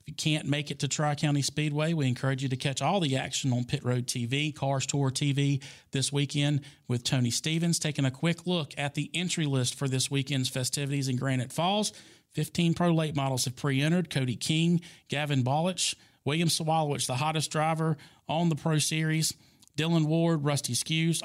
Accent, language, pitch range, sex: American, English, 135-155 Hz, male